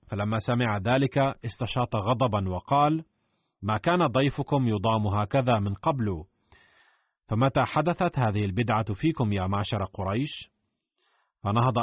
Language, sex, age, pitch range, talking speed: Arabic, male, 40-59, 105-135 Hz, 110 wpm